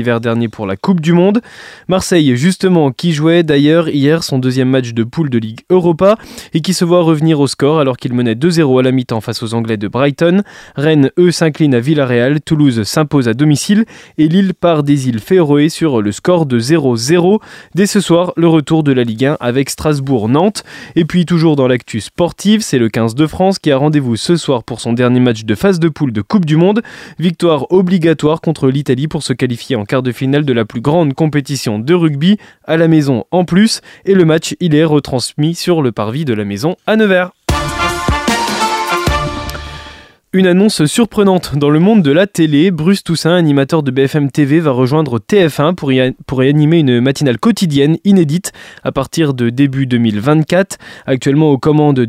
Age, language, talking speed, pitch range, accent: 20-39, French, 195 wpm, 130-175 Hz, French